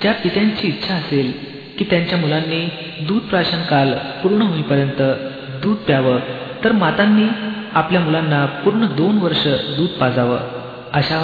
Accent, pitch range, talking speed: native, 140-190 Hz, 125 wpm